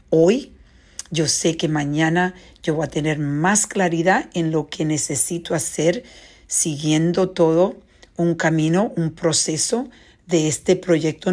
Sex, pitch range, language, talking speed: female, 155-195 Hz, English, 135 wpm